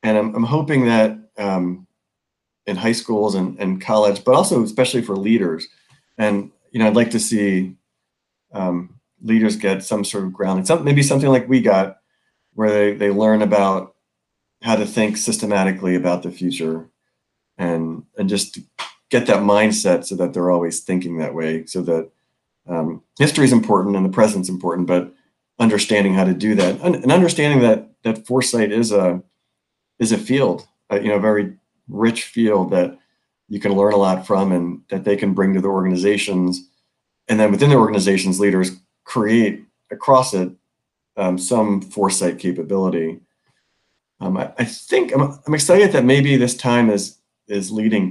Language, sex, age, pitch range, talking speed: English, male, 40-59, 95-110 Hz, 170 wpm